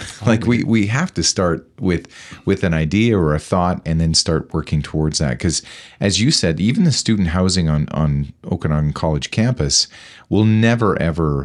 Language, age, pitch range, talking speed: English, 40-59, 75-100 Hz, 185 wpm